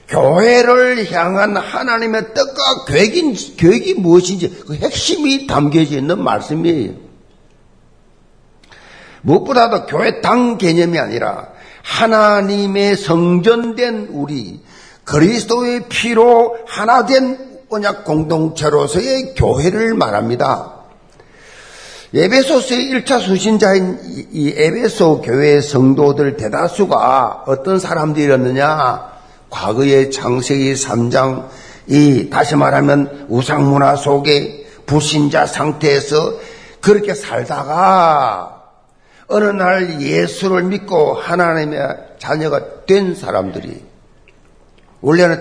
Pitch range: 145-235 Hz